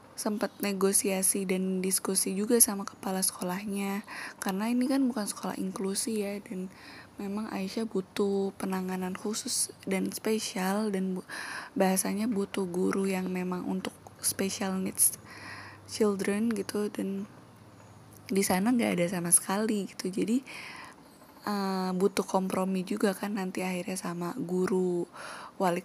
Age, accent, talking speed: 10-29, native, 125 wpm